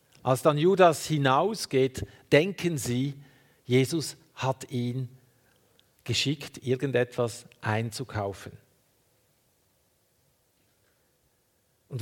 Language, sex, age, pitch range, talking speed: German, male, 50-69, 120-145 Hz, 65 wpm